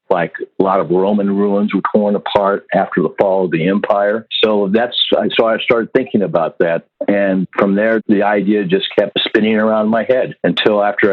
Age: 50-69